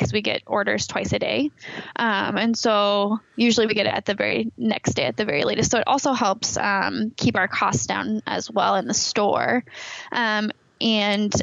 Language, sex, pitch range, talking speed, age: English, female, 205-235 Hz, 205 wpm, 10-29